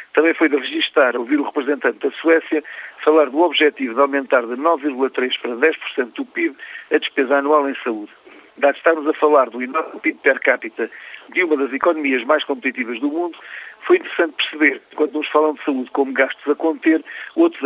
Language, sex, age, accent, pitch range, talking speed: Portuguese, male, 50-69, Portuguese, 140-170 Hz, 190 wpm